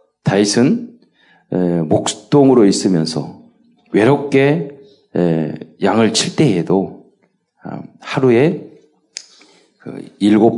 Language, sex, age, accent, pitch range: Korean, male, 40-59, native, 95-125 Hz